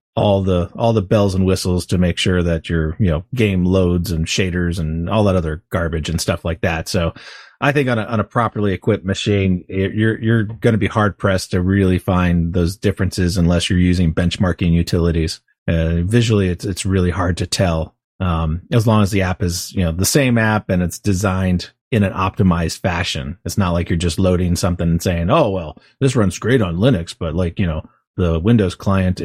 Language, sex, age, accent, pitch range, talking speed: English, male, 30-49, American, 90-110 Hz, 215 wpm